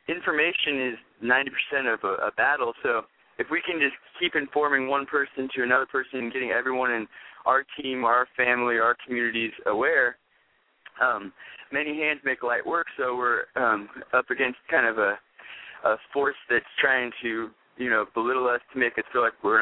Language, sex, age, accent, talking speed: English, male, 20-39, American, 180 wpm